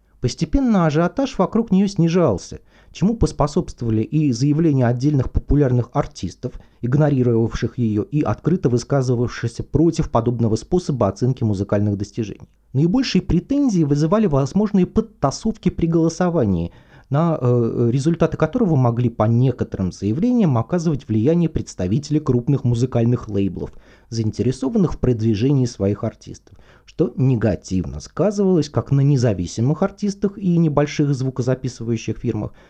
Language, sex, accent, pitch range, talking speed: Russian, male, native, 110-155 Hz, 110 wpm